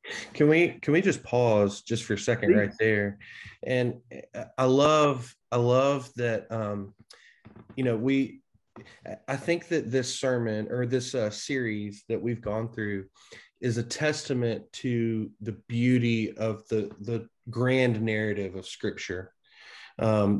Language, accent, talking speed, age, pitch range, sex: English, American, 145 wpm, 20-39, 110-130 Hz, male